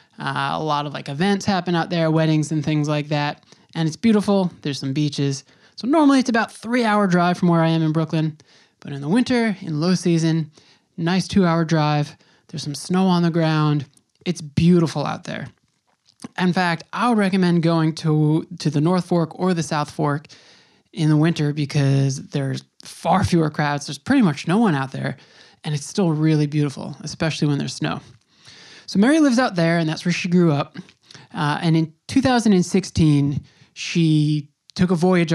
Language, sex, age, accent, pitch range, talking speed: English, male, 20-39, American, 150-180 Hz, 185 wpm